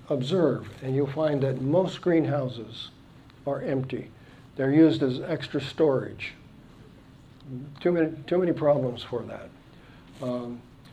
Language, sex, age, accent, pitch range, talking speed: English, male, 60-79, American, 130-155 Hz, 120 wpm